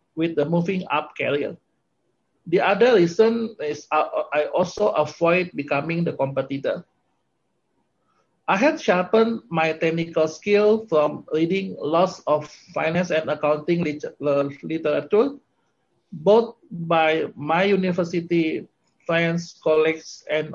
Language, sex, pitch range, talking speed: English, male, 155-195 Hz, 105 wpm